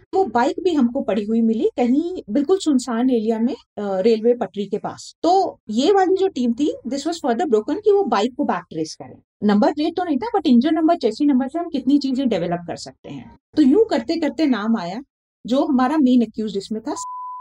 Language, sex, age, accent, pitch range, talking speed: Hindi, female, 30-49, native, 215-315 Hz, 200 wpm